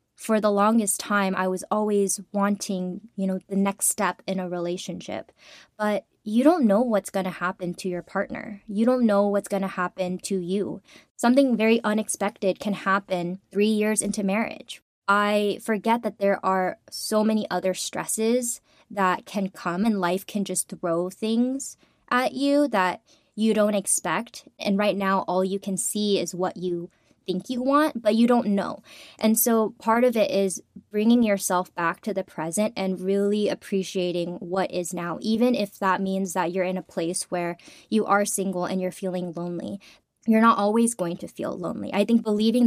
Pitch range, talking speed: 185-220 Hz, 185 wpm